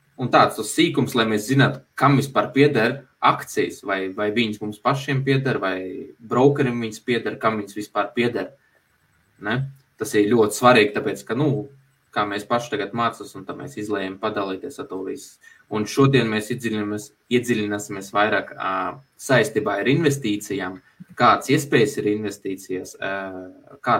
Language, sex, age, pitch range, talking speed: English, male, 20-39, 105-135 Hz, 145 wpm